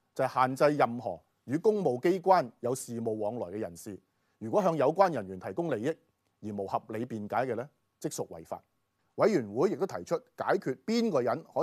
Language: Chinese